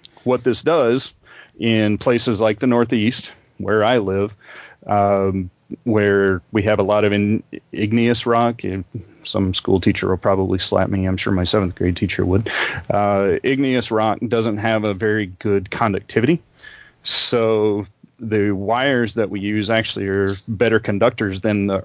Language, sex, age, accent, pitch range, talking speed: English, male, 30-49, American, 100-115 Hz, 155 wpm